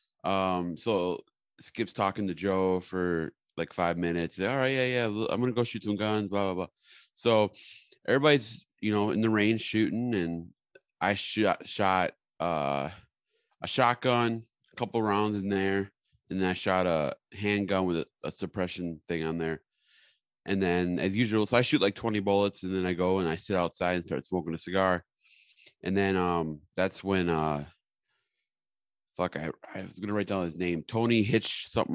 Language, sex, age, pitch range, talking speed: English, male, 30-49, 85-105 Hz, 180 wpm